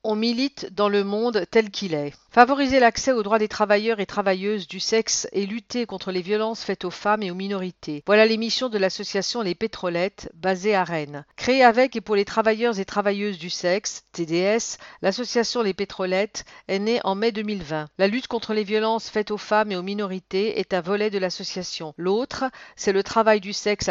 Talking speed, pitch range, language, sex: 200 wpm, 185-220 Hz, English, female